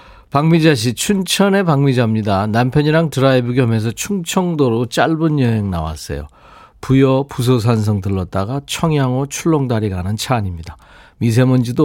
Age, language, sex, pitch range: 40-59, Korean, male, 105-155 Hz